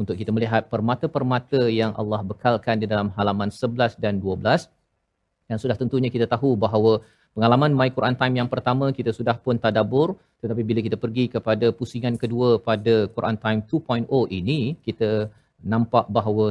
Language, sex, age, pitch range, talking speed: Malayalam, male, 40-59, 110-130 Hz, 165 wpm